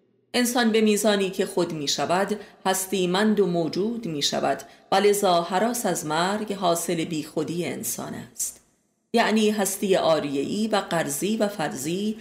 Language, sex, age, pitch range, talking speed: Persian, female, 30-49, 170-210 Hz, 135 wpm